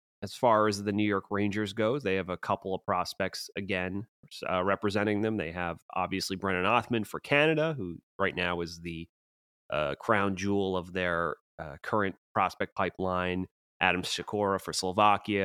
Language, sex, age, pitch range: English, male, 30-49, 90-105 Hz